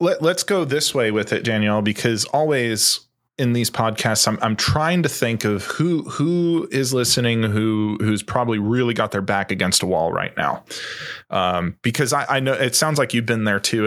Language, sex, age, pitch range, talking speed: English, male, 20-39, 105-135 Hz, 200 wpm